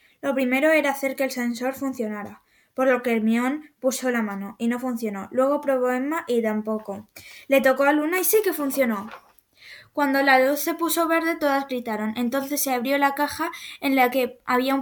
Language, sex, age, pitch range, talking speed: Spanish, female, 10-29, 240-280 Hz, 200 wpm